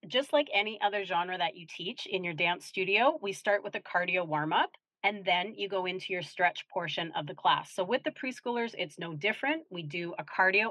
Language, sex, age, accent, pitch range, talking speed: English, female, 30-49, American, 175-220 Hz, 225 wpm